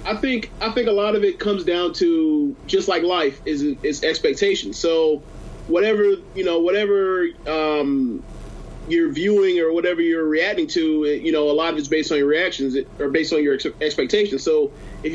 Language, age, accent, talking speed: English, 30-49, American, 190 wpm